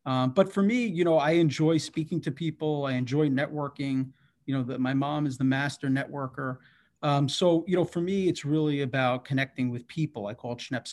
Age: 30-49